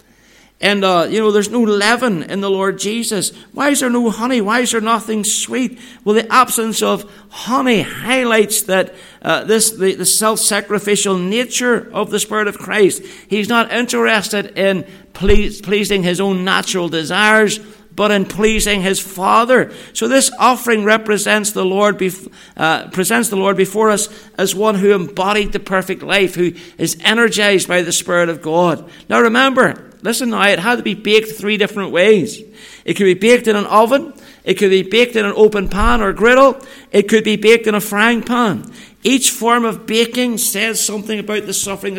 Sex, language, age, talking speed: male, English, 60-79, 185 wpm